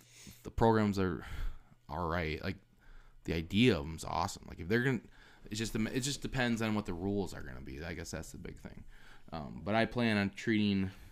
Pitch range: 95-120 Hz